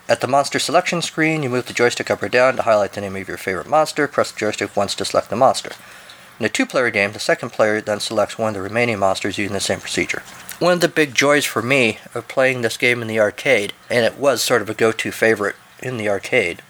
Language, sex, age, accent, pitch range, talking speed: English, male, 50-69, American, 100-130 Hz, 255 wpm